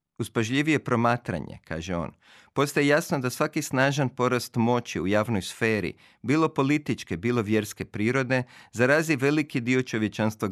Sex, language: male, Croatian